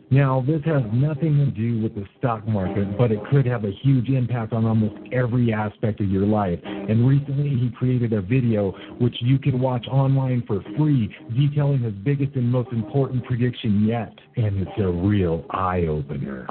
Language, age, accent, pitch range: English, 50-69, American, 105-130 Hz